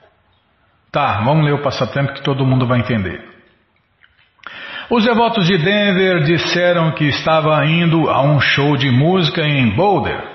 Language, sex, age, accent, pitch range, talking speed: Portuguese, male, 50-69, Brazilian, 135-180 Hz, 145 wpm